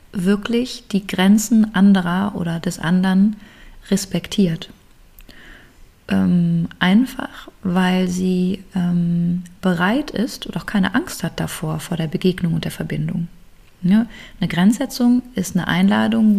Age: 30-49